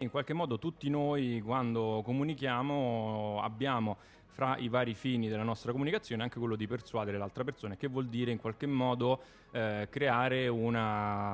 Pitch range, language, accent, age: 105-125 Hz, Italian, native, 20-39